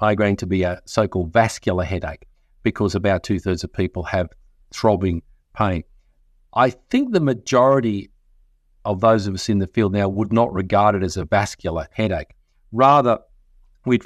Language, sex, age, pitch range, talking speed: English, male, 50-69, 90-115 Hz, 160 wpm